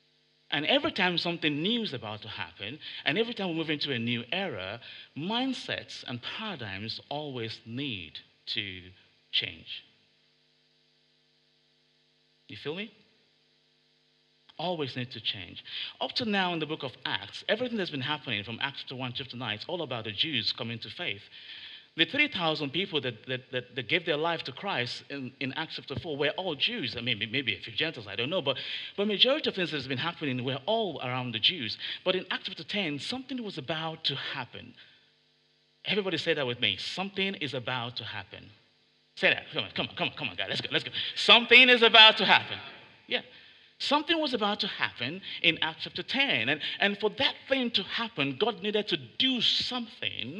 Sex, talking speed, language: male, 190 wpm, English